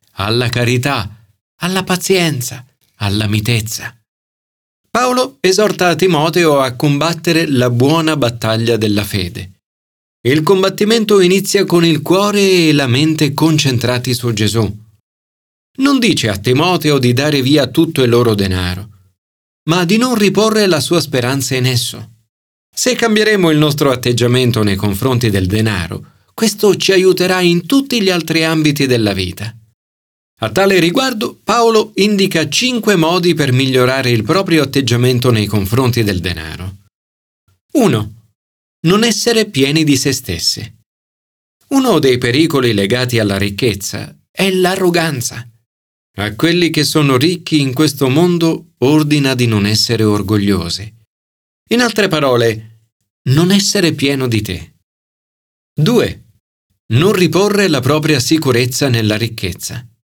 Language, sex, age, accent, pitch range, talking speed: Italian, male, 40-59, native, 110-170 Hz, 130 wpm